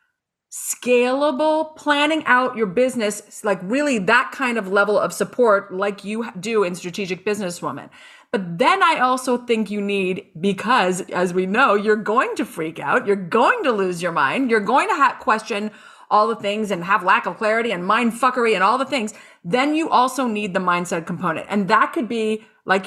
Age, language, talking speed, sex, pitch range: 30-49, English, 195 wpm, female, 200-255 Hz